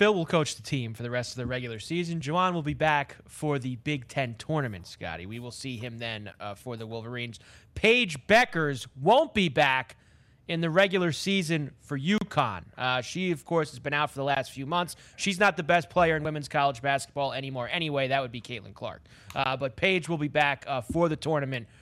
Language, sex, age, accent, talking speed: English, male, 30-49, American, 220 wpm